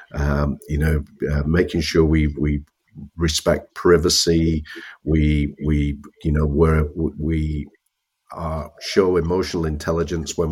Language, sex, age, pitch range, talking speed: English, male, 50-69, 75-85 Hz, 120 wpm